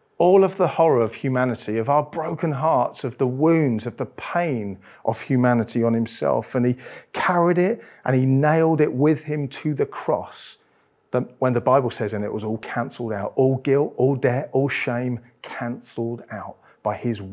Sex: male